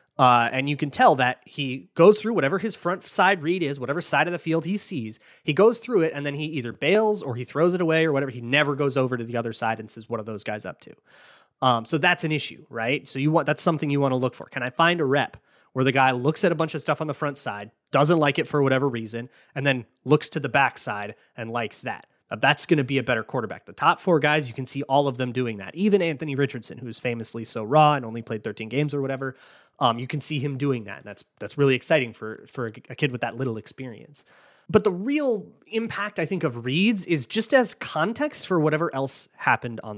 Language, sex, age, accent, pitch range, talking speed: English, male, 30-49, American, 130-175 Hz, 265 wpm